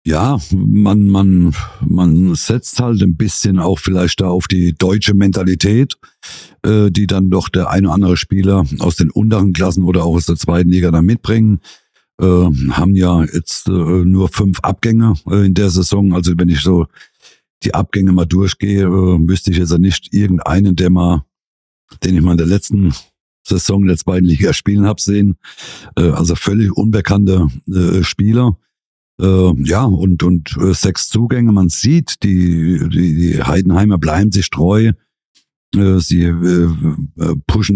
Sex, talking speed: male, 160 wpm